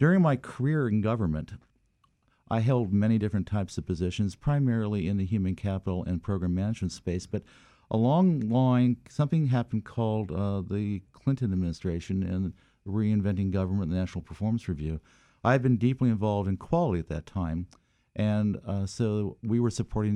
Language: English